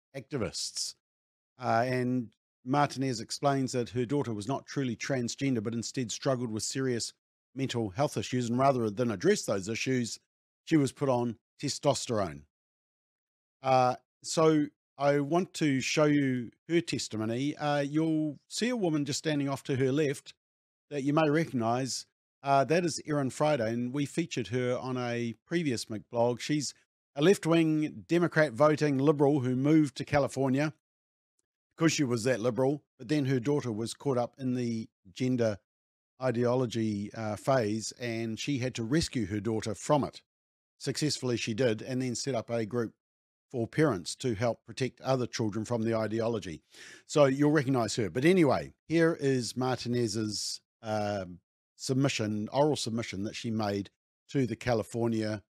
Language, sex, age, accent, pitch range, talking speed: English, male, 50-69, Australian, 110-145 Hz, 155 wpm